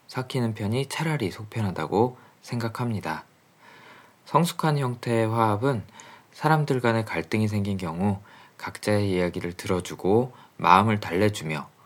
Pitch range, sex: 90-125 Hz, male